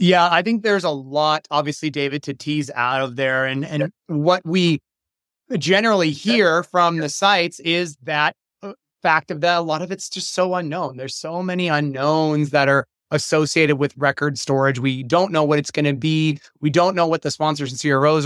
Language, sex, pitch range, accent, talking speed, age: English, male, 140-160 Hz, American, 195 wpm, 30-49